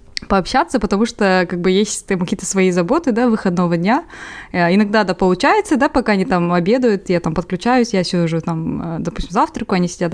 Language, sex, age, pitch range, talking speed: Russian, female, 20-39, 180-220 Hz, 180 wpm